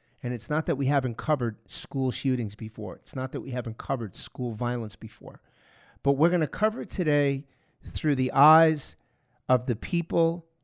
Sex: male